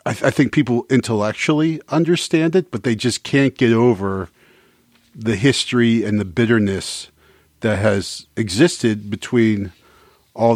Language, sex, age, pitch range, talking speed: English, male, 40-59, 100-125 Hz, 135 wpm